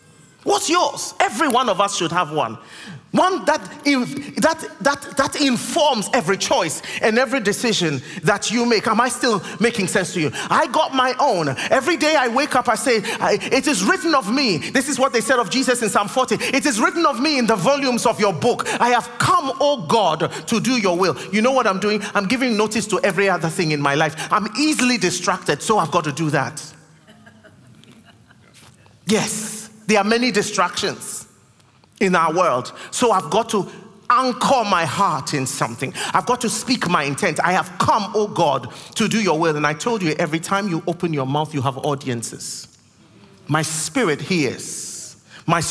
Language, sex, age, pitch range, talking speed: English, male, 30-49, 165-240 Hz, 200 wpm